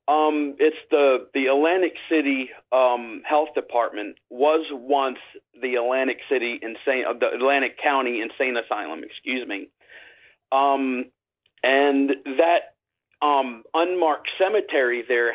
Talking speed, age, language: 115 wpm, 40-59, English